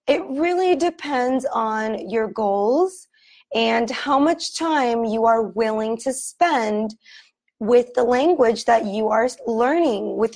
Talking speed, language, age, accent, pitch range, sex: 135 wpm, English, 20-39, American, 220-290 Hz, female